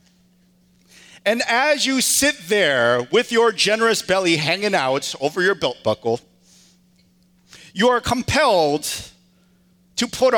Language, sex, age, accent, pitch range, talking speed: English, male, 40-59, American, 135-190 Hz, 115 wpm